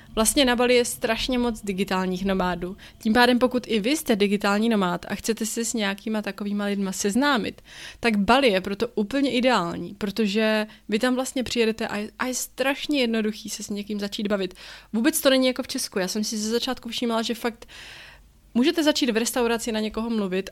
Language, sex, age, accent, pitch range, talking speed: Czech, female, 20-39, native, 195-240 Hz, 195 wpm